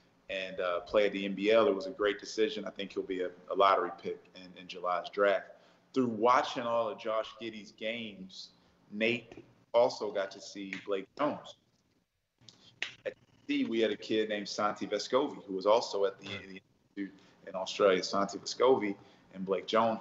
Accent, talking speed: American, 175 wpm